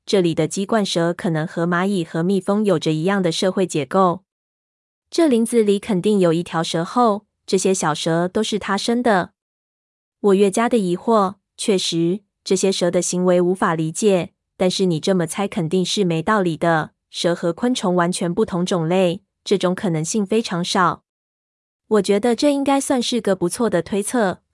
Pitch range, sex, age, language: 170-205 Hz, female, 20-39, Chinese